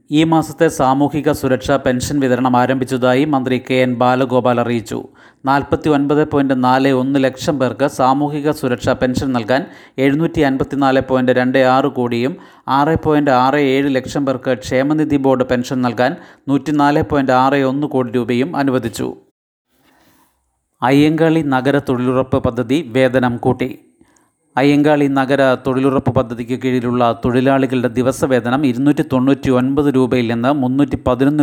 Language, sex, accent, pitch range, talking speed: Malayalam, male, native, 125-145 Hz, 95 wpm